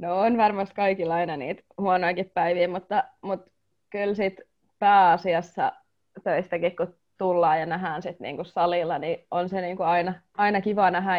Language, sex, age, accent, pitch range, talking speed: Finnish, female, 20-39, native, 170-195 Hz, 150 wpm